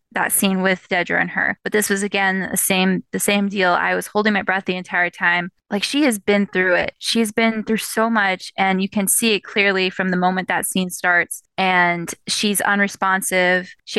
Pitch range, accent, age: 185-220 Hz, American, 20-39